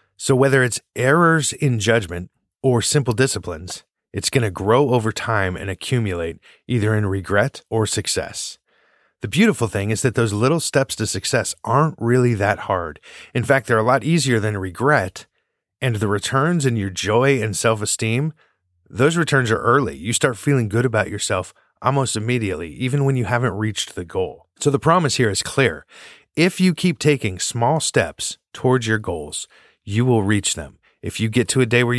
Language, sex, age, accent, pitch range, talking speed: English, male, 30-49, American, 105-135 Hz, 180 wpm